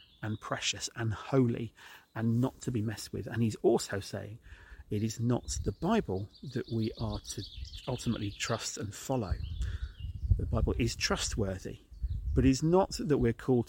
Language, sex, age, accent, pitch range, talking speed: English, male, 40-59, British, 100-130 Hz, 160 wpm